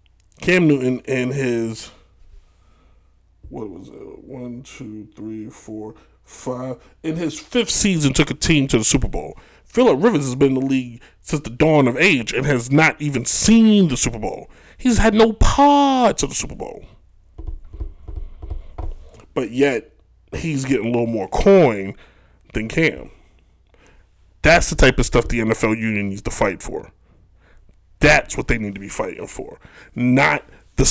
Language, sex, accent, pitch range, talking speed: English, male, American, 95-150 Hz, 160 wpm